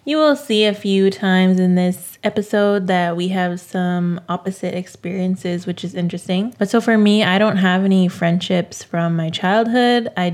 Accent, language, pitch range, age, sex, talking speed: American, English, 175-205 Hz, 20-39, female, 180 wpm